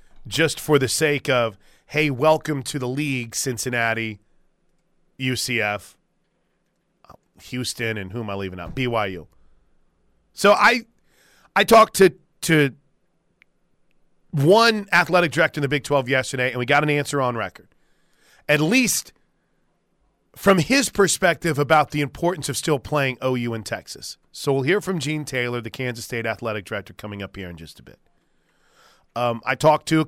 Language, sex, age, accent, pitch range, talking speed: English, male, 30-49, American, 125-160 Hz, 155 wpm